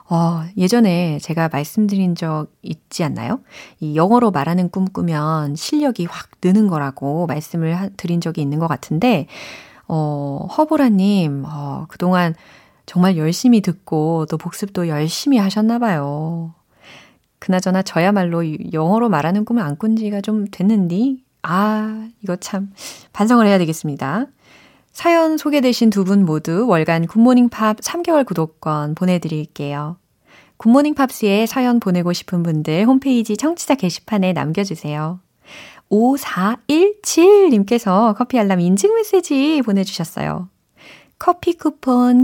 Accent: native